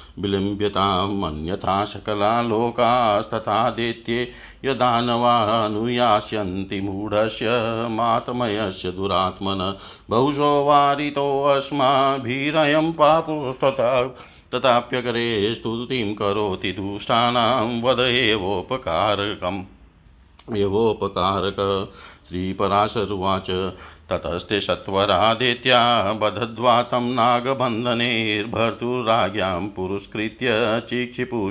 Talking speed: 40 wpm